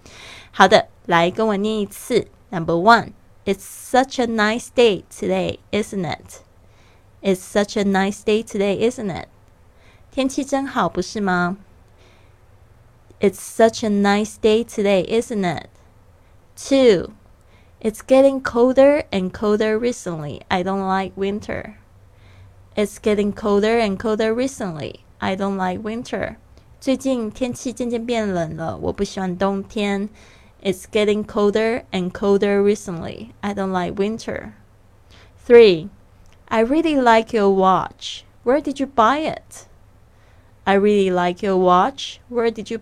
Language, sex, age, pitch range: Chinese, female, 20-39, 175-225 Hz